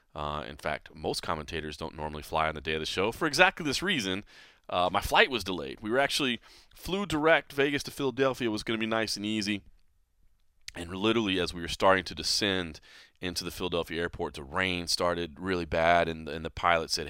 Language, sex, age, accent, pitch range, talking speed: English, male, 30-49, American, 80-105 Hz, 215 wpm